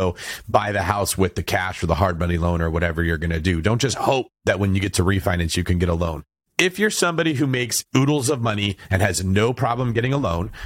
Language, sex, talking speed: English, male, 260 wpm